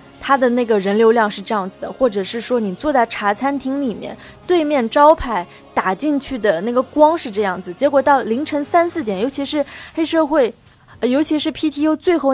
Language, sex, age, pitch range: Chinese, female, 20-39, 215-295 Hz